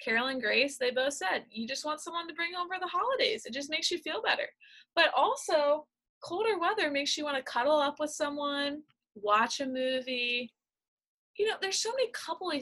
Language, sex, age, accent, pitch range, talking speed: English, female, 20-39, American, 220-315 Hz, 195 wpm